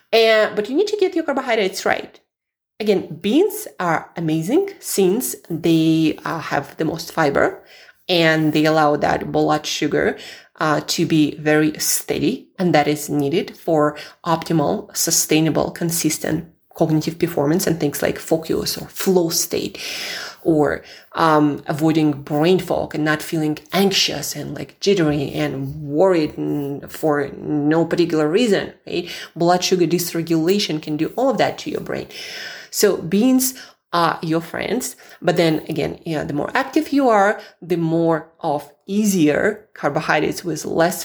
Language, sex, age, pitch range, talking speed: English, female, 20-39, 150-190 Hz, 145 wpm